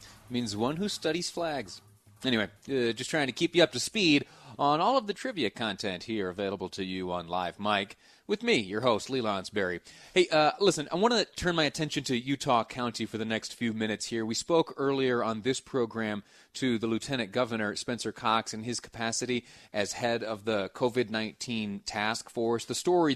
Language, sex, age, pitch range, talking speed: English, male, 30-49, 110-130 Hz, 195 wpm